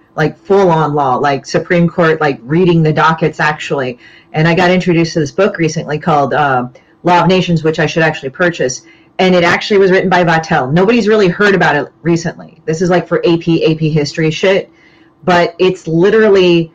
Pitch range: 155-175 Hz